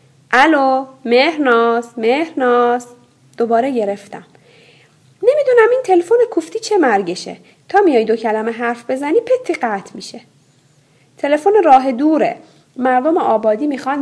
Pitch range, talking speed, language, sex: 210-310 Hz, 110 wpm, Persian, female